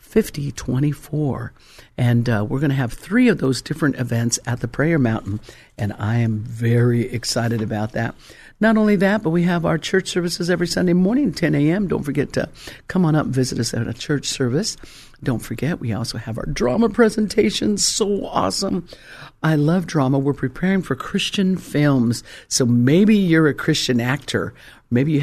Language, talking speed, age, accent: English, 185 wpm, 50-69, American